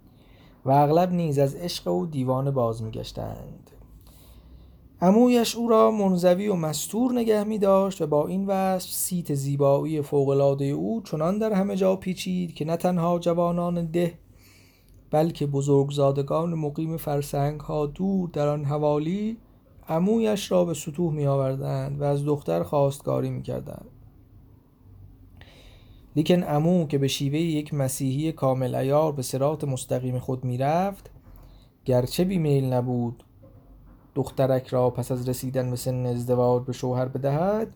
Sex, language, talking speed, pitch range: male, Persian, 135 wpm, 125-165 Hz